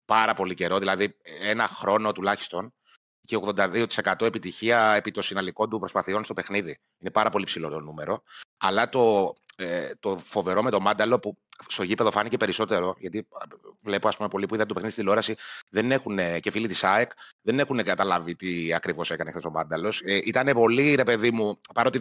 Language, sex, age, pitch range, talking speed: Greek, male, 30-49, 100-125 Hz, 190 wpm